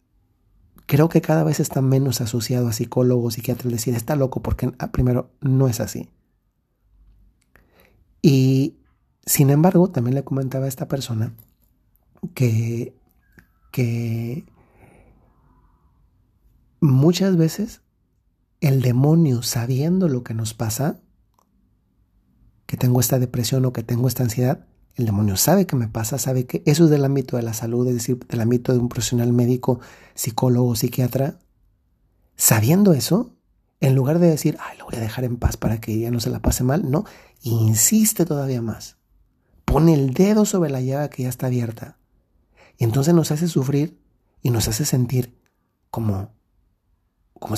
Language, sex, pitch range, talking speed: Spanish, male, 115-150 Hz, 150 wpm